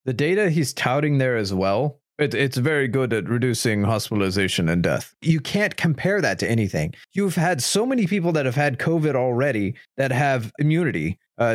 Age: 30-49